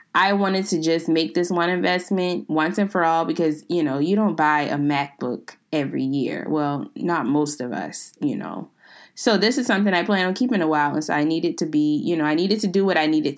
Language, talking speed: English, 240 wpm